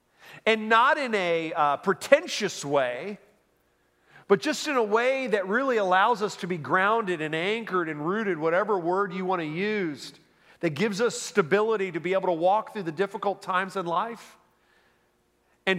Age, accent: 40-59, American